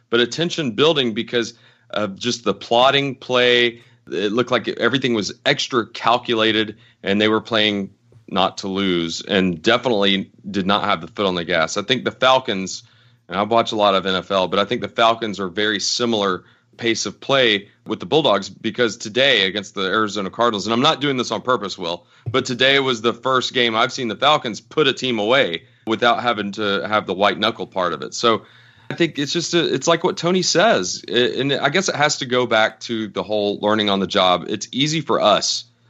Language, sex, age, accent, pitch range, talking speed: English, male, 30-49, American, 95-120 Hz, 210 wpm